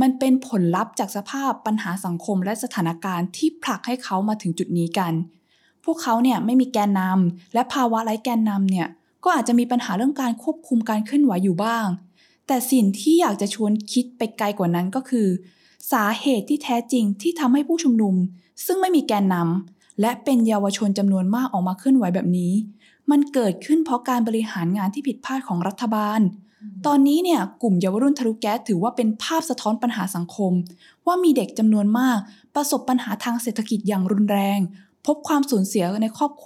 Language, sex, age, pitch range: Thai, female, 20-39, 195-265 Hz